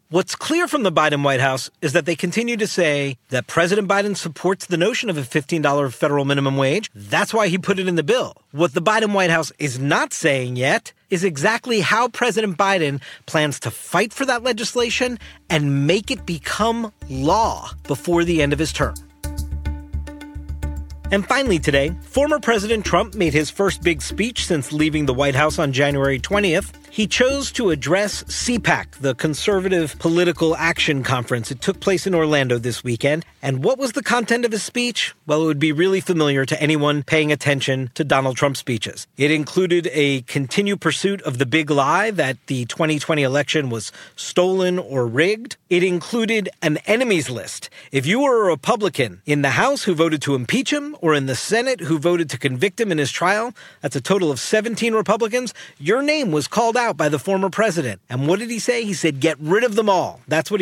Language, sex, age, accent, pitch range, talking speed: English, male, 40-59, American, 140-200 Hz, 195 wpm